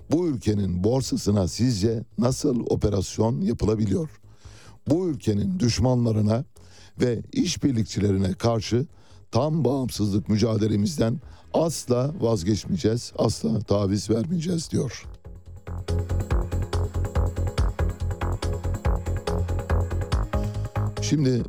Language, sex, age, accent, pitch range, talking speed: Turkish, male, 60-79, native, 95-115 Hz, 65 wpm